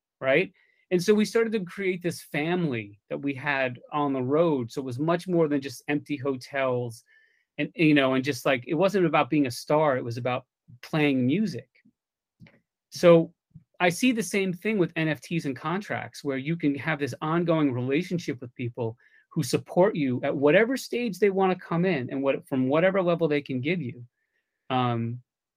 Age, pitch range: 30-49, 125-165 Hz